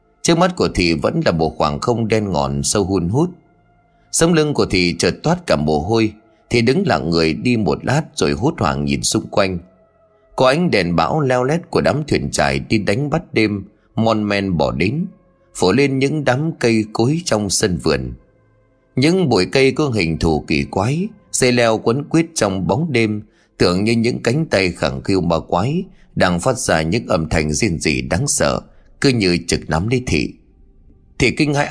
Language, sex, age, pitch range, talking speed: Vietnamese, male, 30-49, 80-130 Hz, 200 wpm